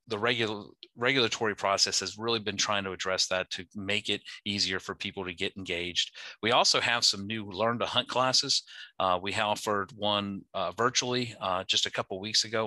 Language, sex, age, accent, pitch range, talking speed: English, male, 40-59, American, 95-110 Hz, 200 wpm